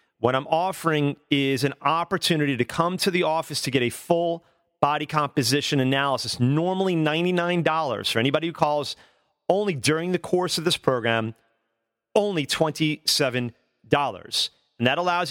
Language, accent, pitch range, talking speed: English, American, 115-155 Hz, 140 wpm